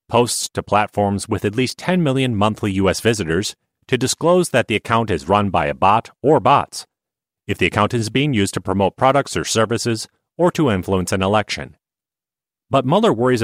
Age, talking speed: 30-49, 190 wpm